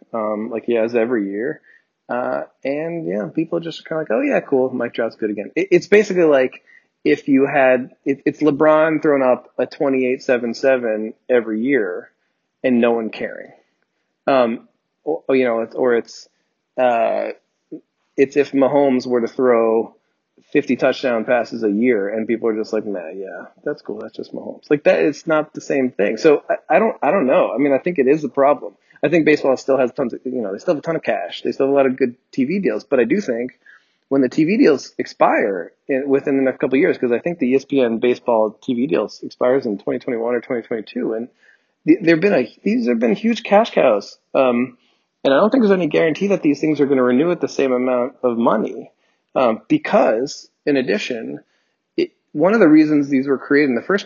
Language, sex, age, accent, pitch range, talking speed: English, male, 30-49, American, 125-155 Hz, 225 wpm